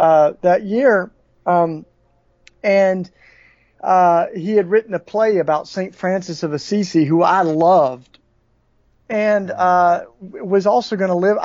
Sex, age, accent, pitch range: male, 40-59, American, 155-185 Hz